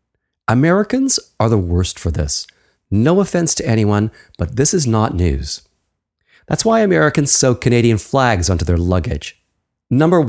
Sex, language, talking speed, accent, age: male, English, 145 wpm, American, 40-59